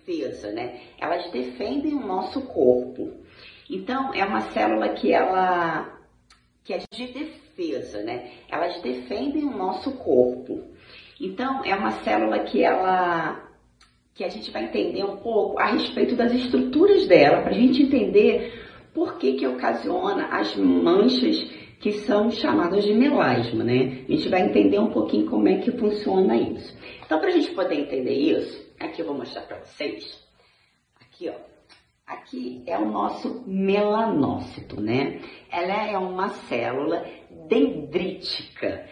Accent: Brazilian